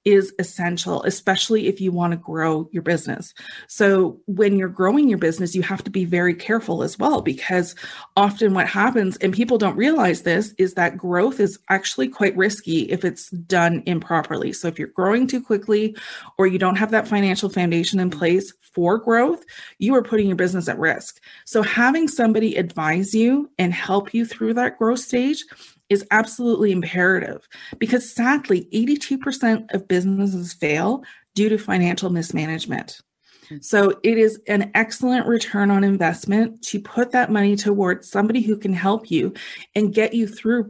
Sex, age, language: female, 30-49, English